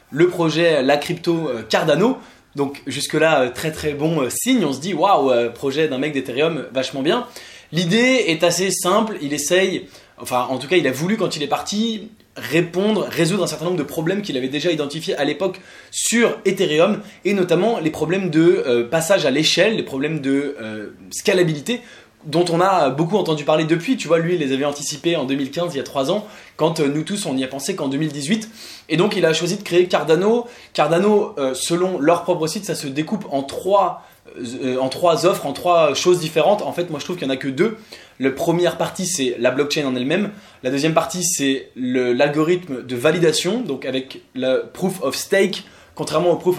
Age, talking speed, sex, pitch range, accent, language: 20-39, 205 wpm, male, 135-180 Hz, French, English